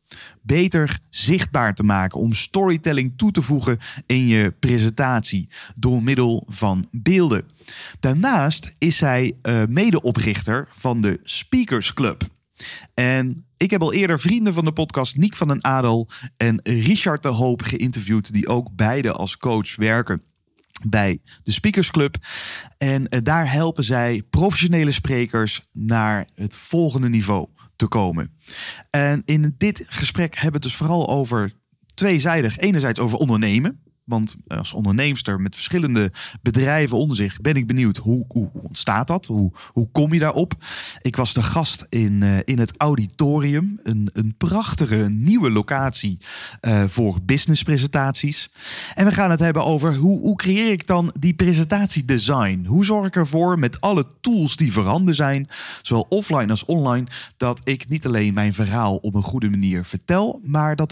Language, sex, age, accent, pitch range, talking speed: Dutch, male, 30-49, Dutch, 110-160 Hz, 150 wpm